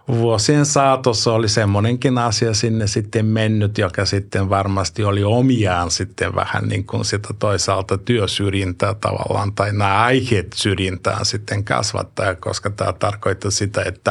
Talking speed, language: 130 wpm, Finnish